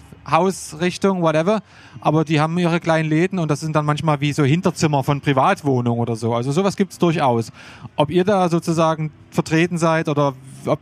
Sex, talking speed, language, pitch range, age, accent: male, 185 wpm, German, 145-175 Hz, 30-49, German